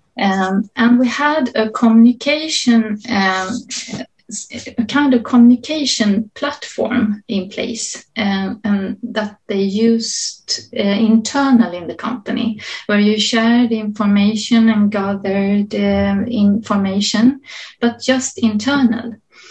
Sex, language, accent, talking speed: female, English, Swedish, 110 wpm